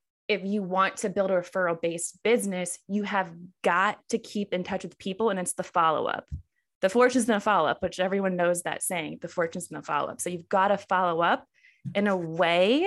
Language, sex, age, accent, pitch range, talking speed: English, female, 20-39, American, 180-220 Hz, 230 wpm